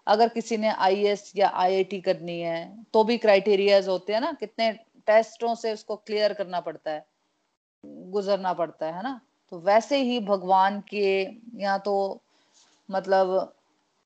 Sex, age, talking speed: female, 30-49, 150 wpm